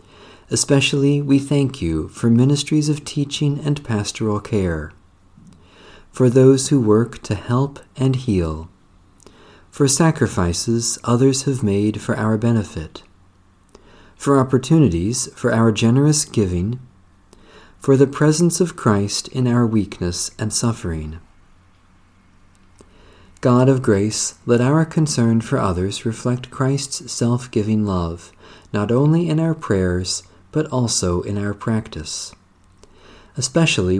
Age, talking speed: 40-59, 120 wpm